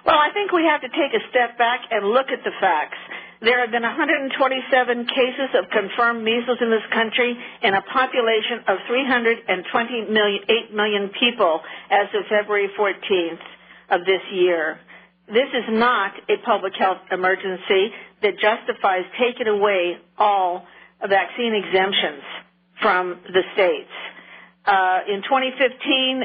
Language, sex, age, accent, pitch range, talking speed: English, female, 50-69, American, 200-255 Hz, 135 wpm